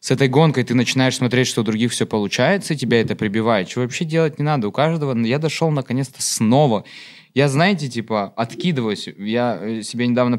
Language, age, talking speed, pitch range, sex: Russian, 20-39, 195 wpm, 110-140 Hz, male